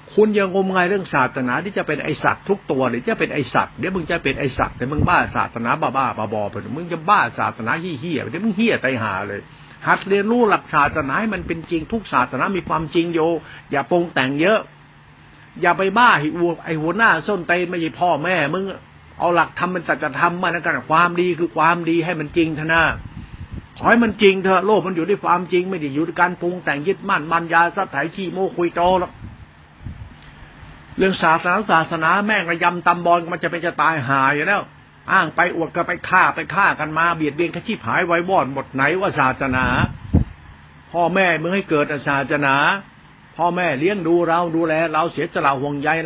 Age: 60-79